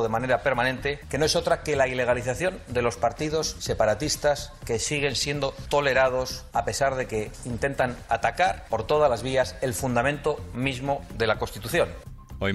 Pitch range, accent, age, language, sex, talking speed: 80-110 Hz, Spanish, 30-49, Spanish, male, 165 wpm